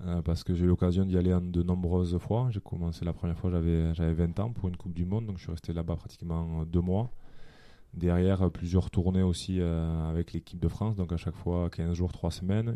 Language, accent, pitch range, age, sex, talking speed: French, French, 85-90 Hz, 20-39, male, 240 wpm